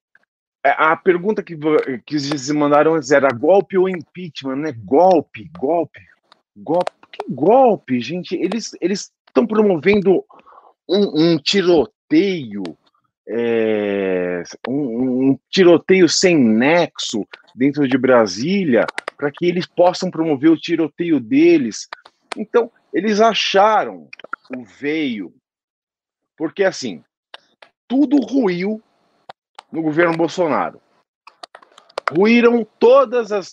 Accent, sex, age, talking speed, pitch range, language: Brazilian, male, 40-59, 100 wpm, 150-215 Hz, Portuguese